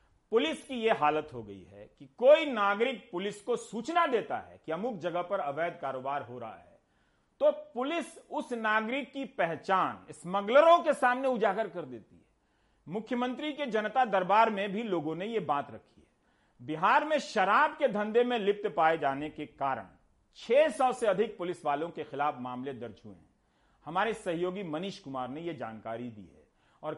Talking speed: 180 wpm